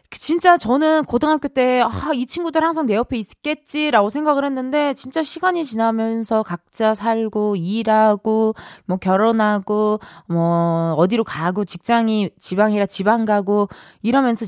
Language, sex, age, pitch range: Korean, female, 20-39, 190-285 Hz